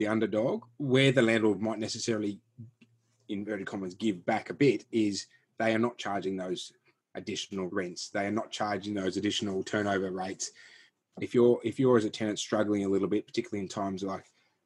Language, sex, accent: English, male, Australian